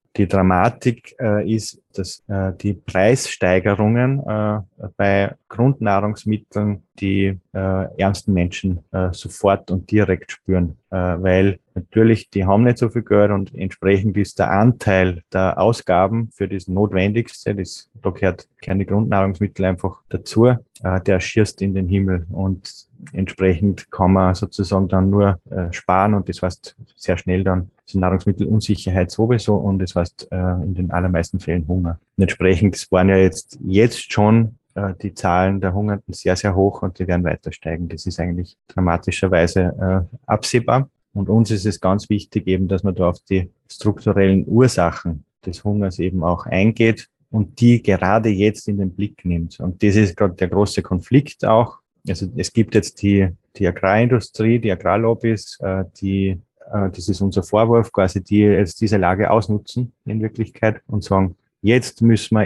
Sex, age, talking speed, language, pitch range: male, 30-49, 160 wpm, German, 95-105 Hz